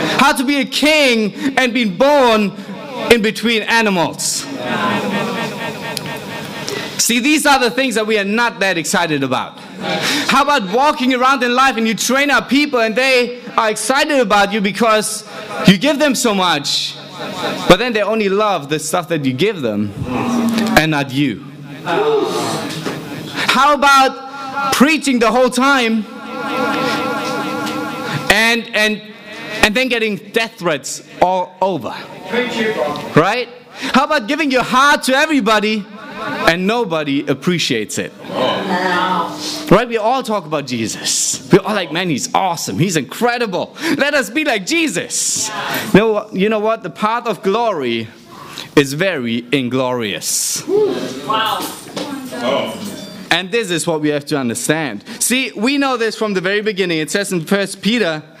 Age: 30-49